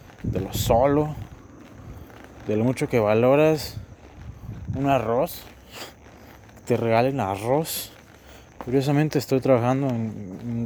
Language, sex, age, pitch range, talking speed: Spanish, male, 20-39, 105-135 Hz, 100 wpm